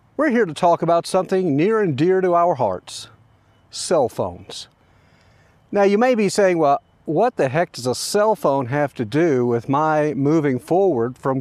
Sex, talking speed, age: male, 185 wpm, 50-69